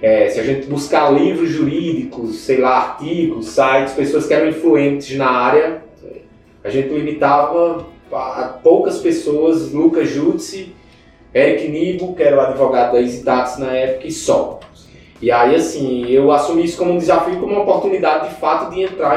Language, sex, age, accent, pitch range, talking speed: Portuguese, male, 20-39, Brazilian, 135-170 Hz, 170 wpm